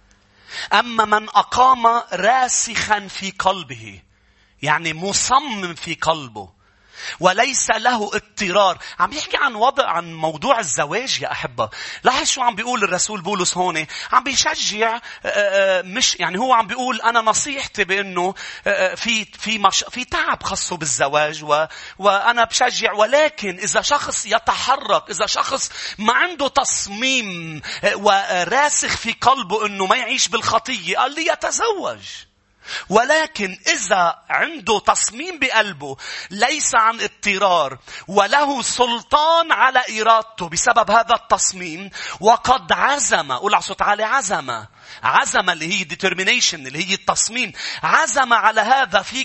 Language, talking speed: English, 115 wpm